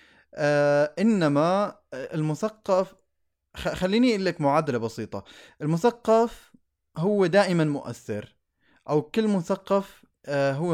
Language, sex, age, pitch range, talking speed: Arabic, male, 20-39, 125-175 Hz, 80 wpm